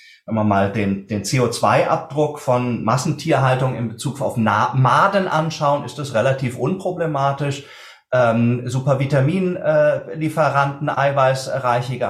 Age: 30-49